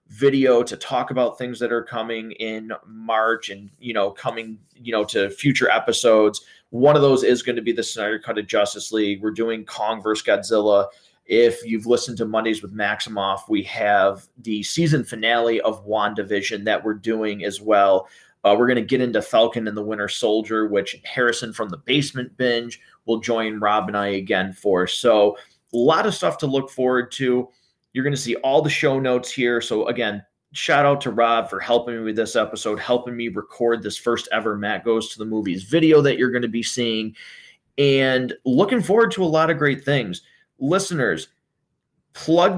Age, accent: 30-49, American